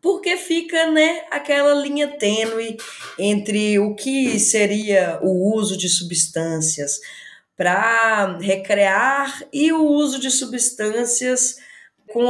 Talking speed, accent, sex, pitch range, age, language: 105 wpm, Brazilian, female, 190-270 Hz, 20-39, Portuguese